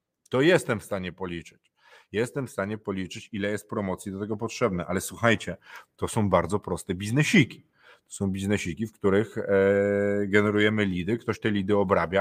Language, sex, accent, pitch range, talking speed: Polish, male, native, 95-125 Hz, 160 wpm